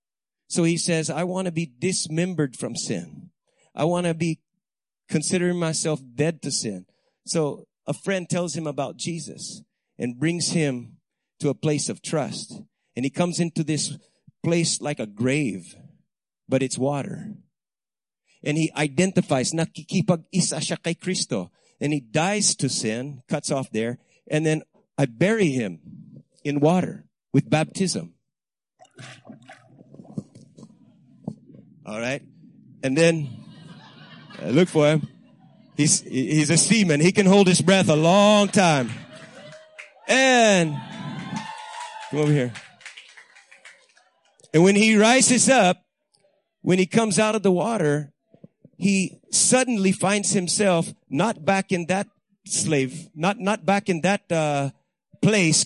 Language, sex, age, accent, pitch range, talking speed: English, male, 50-69, American, 150-195 Hz, 125 wpm